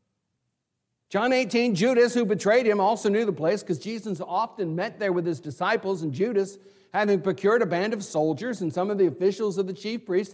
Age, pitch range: 60-79, 135-205 Hz